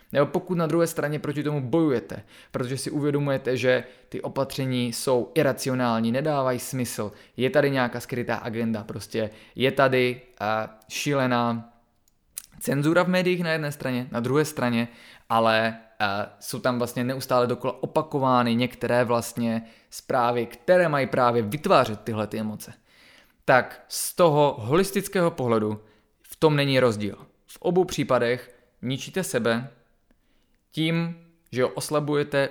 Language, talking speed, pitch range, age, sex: Czech, 125 wpm, 120-145 Hz, 20-39, male